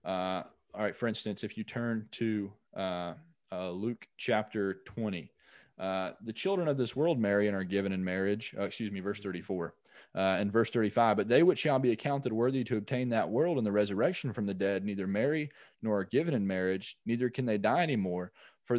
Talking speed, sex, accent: 210 wpm, male, American